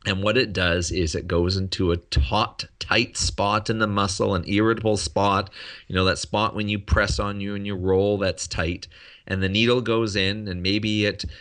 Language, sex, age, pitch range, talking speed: English, male, 30-49, 95-110 Hz, 210 wpm